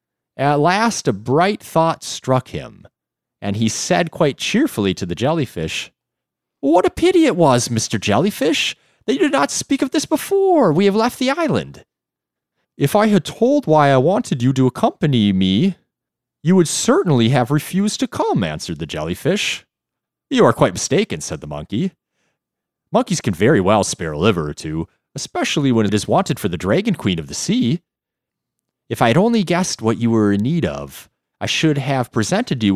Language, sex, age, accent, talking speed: English, male, 30-49, American, 185 wpm